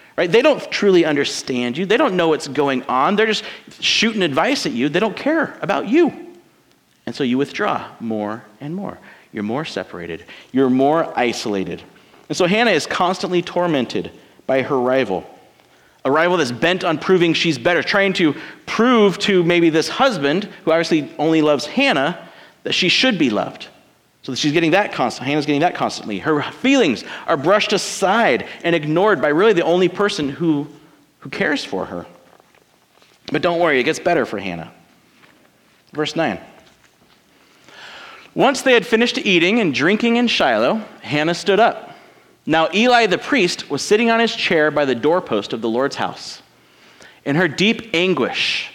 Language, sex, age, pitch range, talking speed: English, male, 40-59, 150-220 Hz, 170 wpm